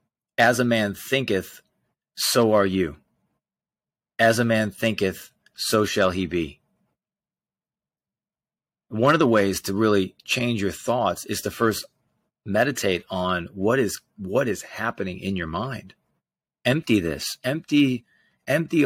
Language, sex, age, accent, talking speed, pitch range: English, male, 30-49, American, 130 wpm, 95-120 Hz